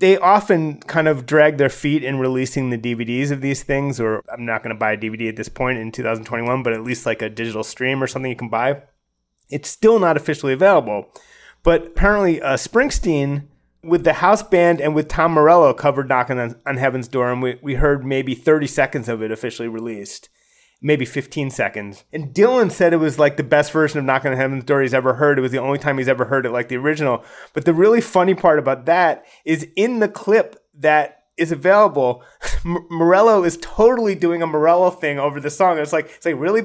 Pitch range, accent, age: 130-175 Hz, American, 30-49